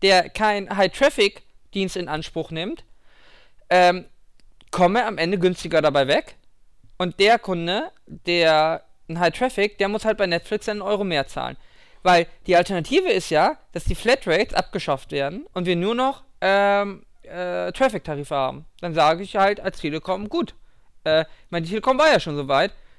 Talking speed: 155 wpm